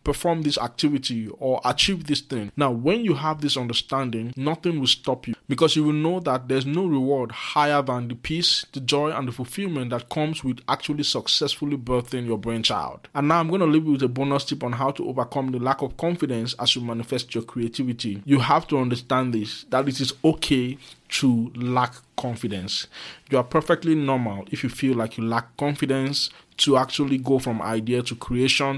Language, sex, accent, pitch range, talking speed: English, male, Nigerian, 125-145 Hz, 200 wpm